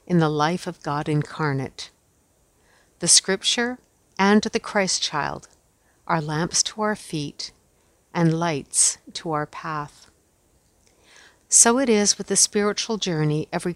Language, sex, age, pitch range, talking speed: English, female, 60-79, 150-200 Hz, 130 wpm